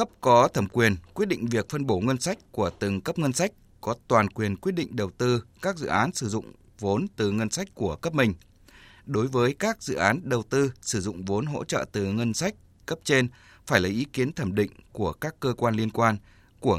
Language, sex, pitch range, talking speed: Vietnamese, male, 105-135 Hz, 230 wpm